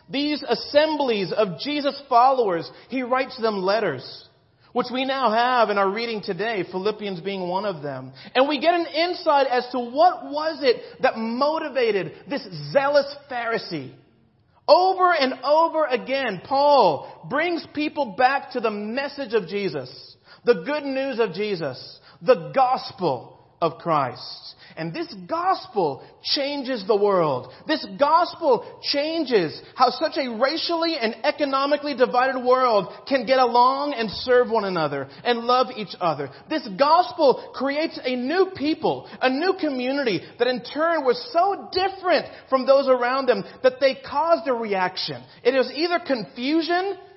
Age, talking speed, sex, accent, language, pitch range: 40-59, 145 wpm, male, American, English, 225-300 Hz